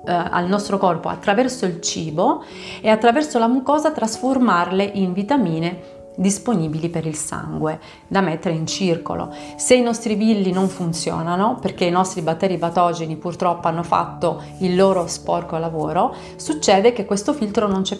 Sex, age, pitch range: female, 30-49, 170-205 Hz